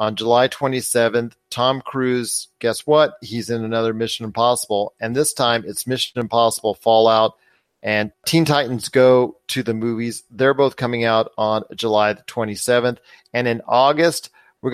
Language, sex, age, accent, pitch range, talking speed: English, male, 40-59, American, 110-130 Hz, 155 wpm